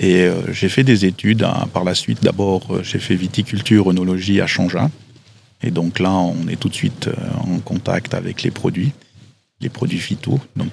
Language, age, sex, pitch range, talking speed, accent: English, 40-59, male, 95-120 Hz, 185 wpm, French